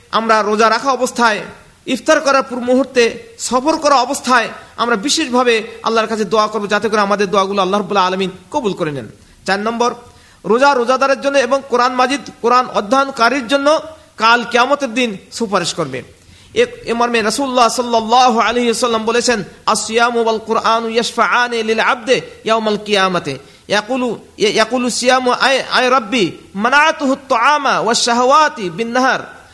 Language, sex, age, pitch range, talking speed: Bengali, male, 40-59, 220-270 Hz, 35 wpm